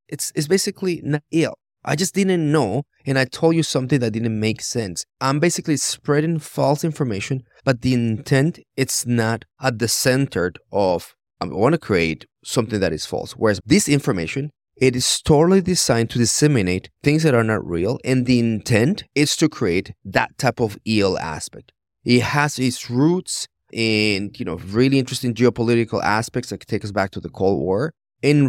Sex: male